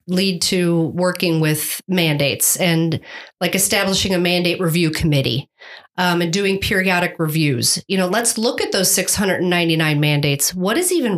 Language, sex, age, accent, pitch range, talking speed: English, female, 40-59, American, 170-200 Hz, 170 wpm